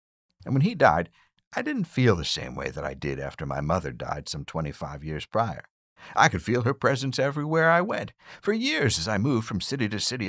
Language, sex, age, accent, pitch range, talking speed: English, male, 60-79, American, 85-125 Hz, 220 wpm